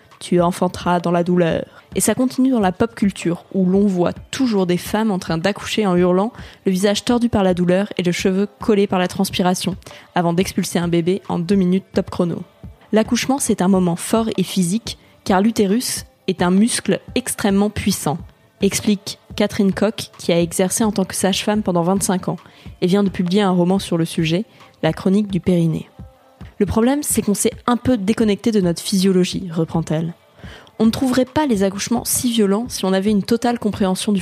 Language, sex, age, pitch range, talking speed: French, female, 20-39, 180-215 Hz, 195 wpm